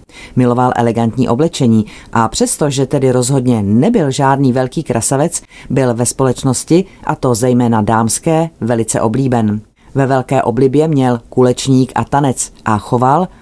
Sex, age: female, 30-49